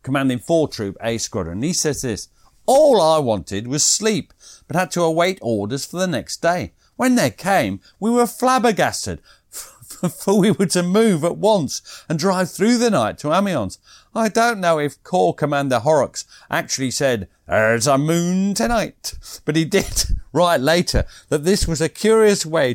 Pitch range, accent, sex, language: 130-200 Hz, British, male, English